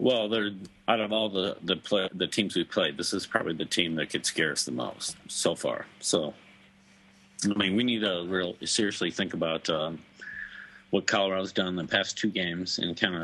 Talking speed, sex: 210 wpm, male